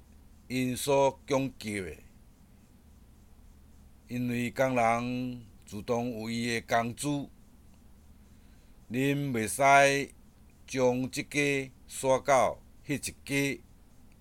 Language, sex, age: Chinese, male, 60-79